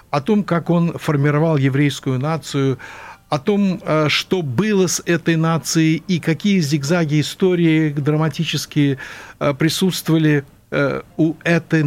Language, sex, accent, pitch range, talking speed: Russian, male, native, 140-175 Hz, 110 wpm